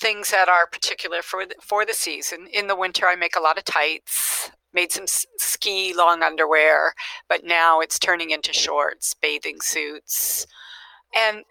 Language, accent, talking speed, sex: English, American, 165 wpm, female